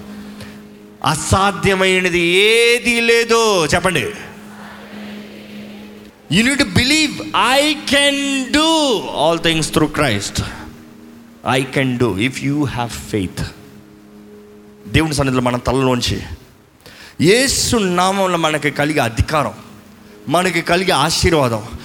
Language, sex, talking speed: Telugu, male, 95 wpm